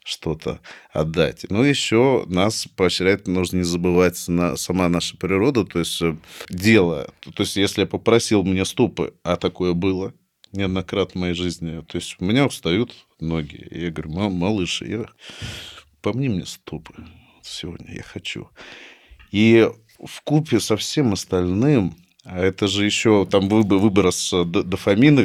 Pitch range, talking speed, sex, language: 90-110 Hz, 145 wpm, male, Russian